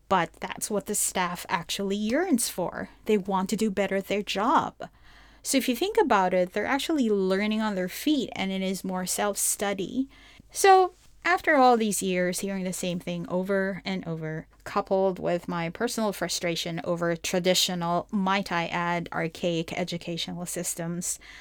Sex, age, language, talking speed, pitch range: female, 30-49, English, 165 wpm, 175-210 Hz